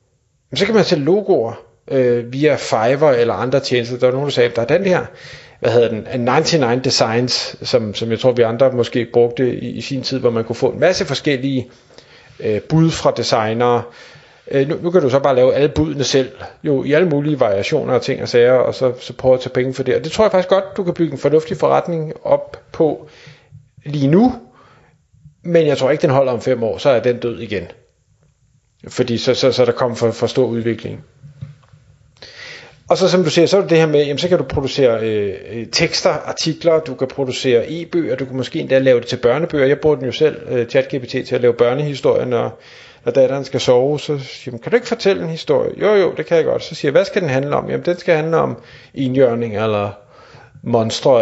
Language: Danish